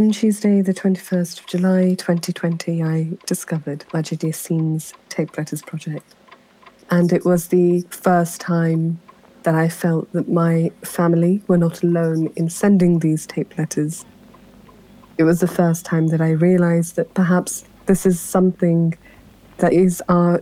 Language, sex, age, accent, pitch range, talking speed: English, female, 20-39, British, 165-195 Hz, 145 wpm